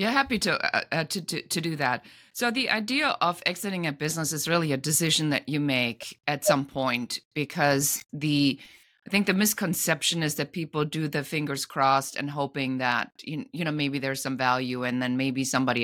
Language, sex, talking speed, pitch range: English, female, 190 wpm, 125-155 Hz